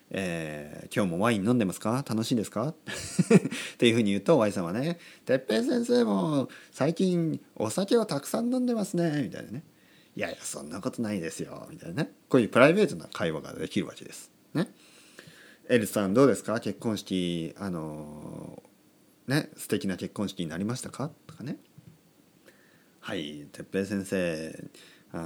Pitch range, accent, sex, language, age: 100-160 Hz, native, male, Japanese, 40-59